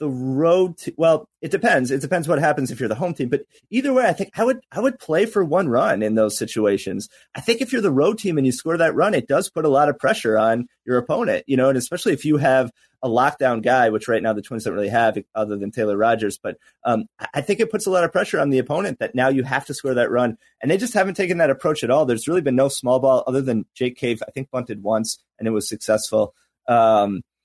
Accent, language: American, English